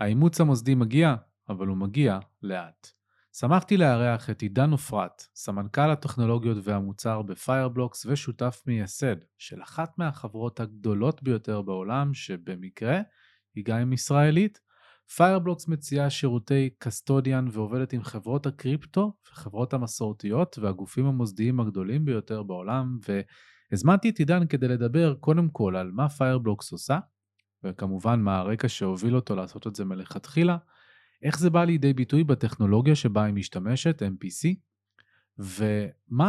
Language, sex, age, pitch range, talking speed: Hebrew, male, 30-49, 105-145 Hz, 120 wpm